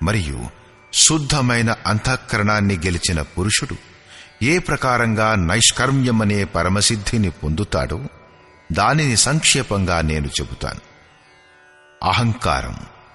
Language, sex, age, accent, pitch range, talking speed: English, male, 50-69, Indian, 85-125 Hz, 70 wpm